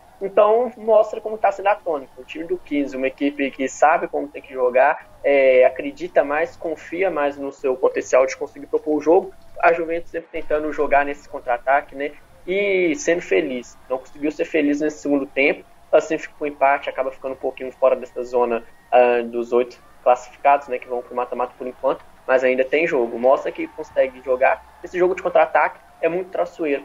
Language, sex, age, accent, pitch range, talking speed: Portuguese, male, 10-29, Brazilian, 135-180 Hz, 190 wpm